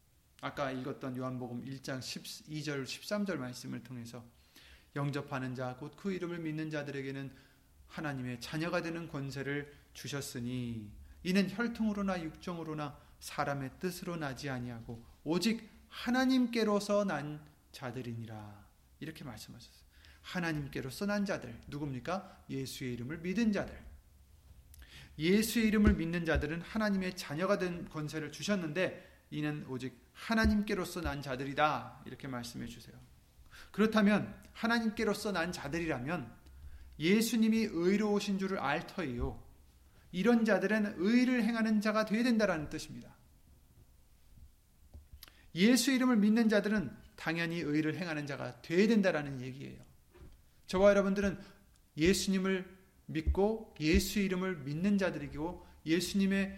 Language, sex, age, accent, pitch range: Korean, male, 30-49, native, 125-200 Hz